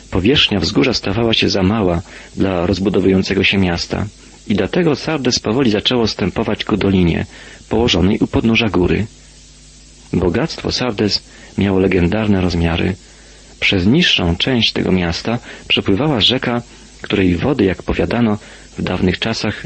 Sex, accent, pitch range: male, native, 90-115 Hz